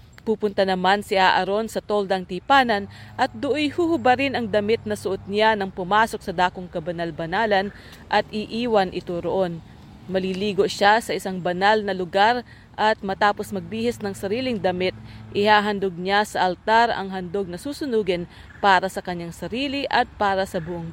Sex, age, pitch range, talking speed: female, 40-59, 185-215 Hz, 150 wpm